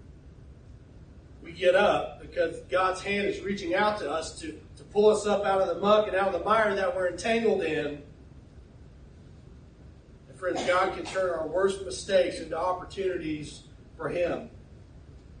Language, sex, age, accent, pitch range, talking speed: English, male, 40-59, American, 150-195 Hz, 160 wpm